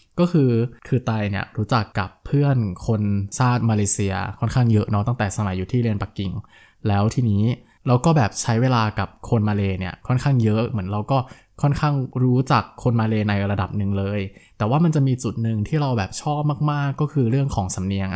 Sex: male